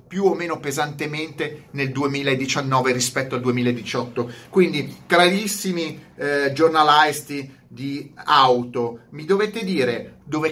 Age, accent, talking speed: 30-49, native, 110 wpm